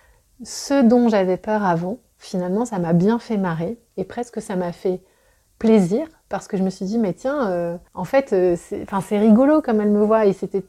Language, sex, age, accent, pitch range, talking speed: French, female, 30-49, French, 185-240 Hz, 210 wpm